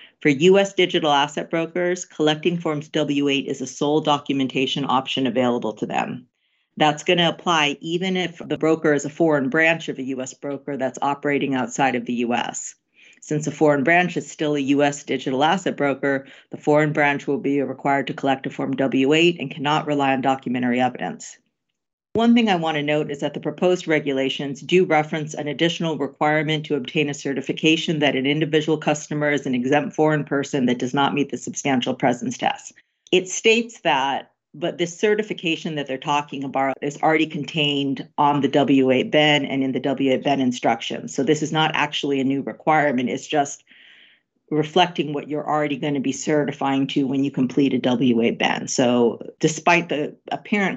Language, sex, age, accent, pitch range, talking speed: English, female, 40-59, American, 140-160 Hz, 180 wpm